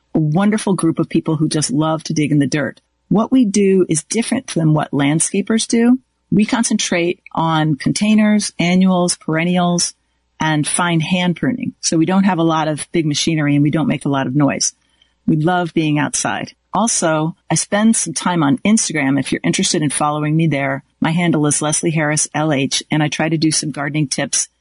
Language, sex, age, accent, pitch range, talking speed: English, female, 40-59, American, 155-200 Hz, 200 wpm